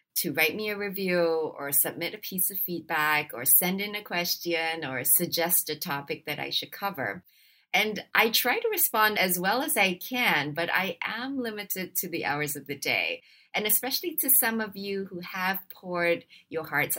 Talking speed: 195 wpm